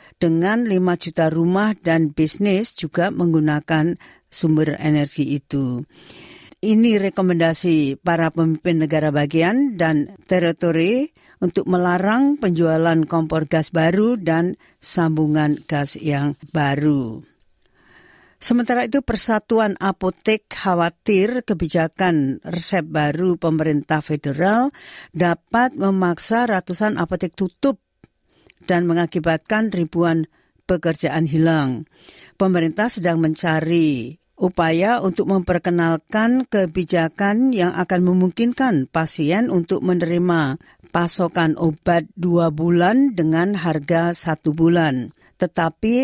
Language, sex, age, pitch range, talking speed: Indonesian, female, 50-69, 160-190 Hz, 95 wpm